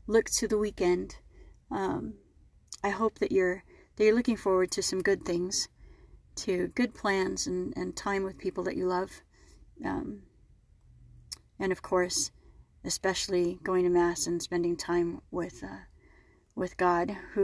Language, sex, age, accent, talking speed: English, female, 30-49, American, 150 wpm